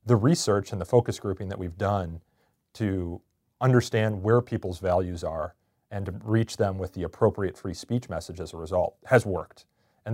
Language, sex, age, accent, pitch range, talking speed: English, male, 40-59, American, 95-115 Hz, 185 wpm